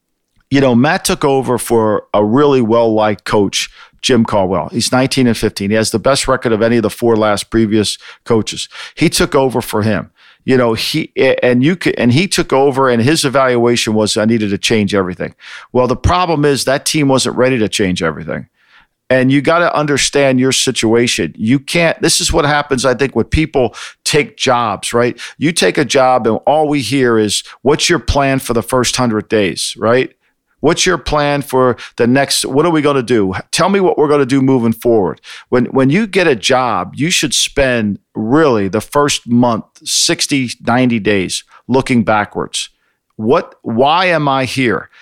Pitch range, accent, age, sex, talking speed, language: 115-140 Hz, American, 50-69, male, 195 wpm, English